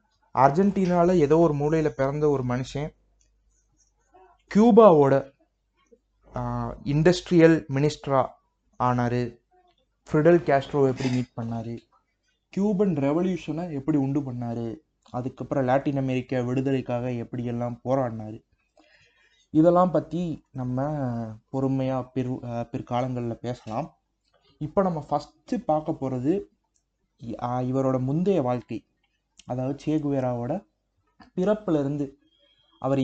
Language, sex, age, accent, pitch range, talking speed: Tamil, male, 30-49, native, 120-150 Hz, 85 wpm